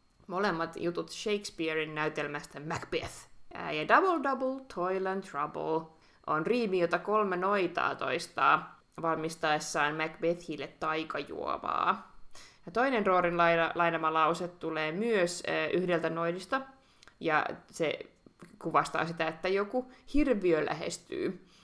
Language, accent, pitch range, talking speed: Finnish, native, 155-205 Hz, 105 wpm